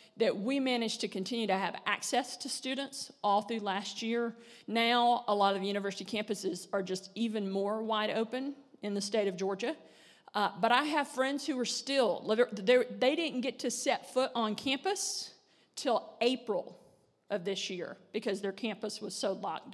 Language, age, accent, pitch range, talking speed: English, 50-69, American, 200-245 Hz, 180 wpm